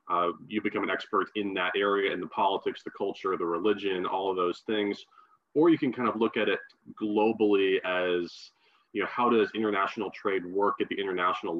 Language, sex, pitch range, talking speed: English, male, 95-115 Hz, 200 wpm